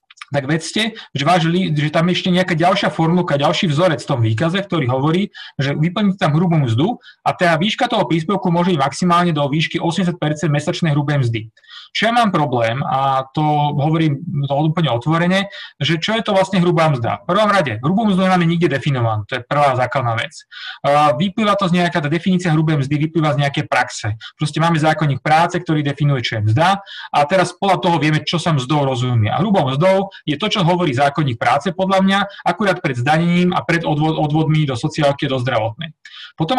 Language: Slovak